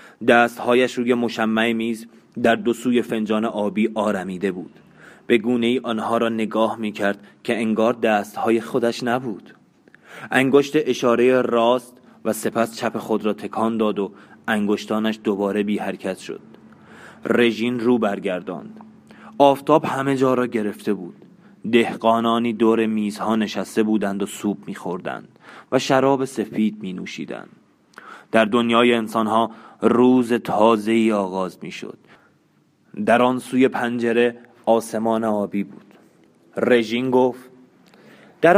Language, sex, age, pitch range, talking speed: Persian, male, 30-49, 110-125 Hz, 130 wpm